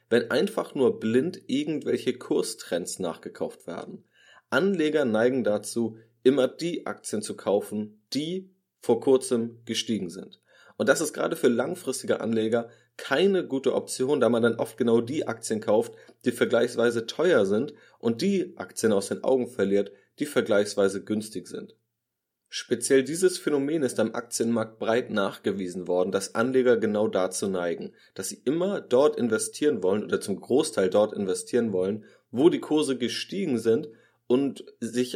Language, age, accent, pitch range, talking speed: German, 30-49, German, 110-145 Hz, 150 wpm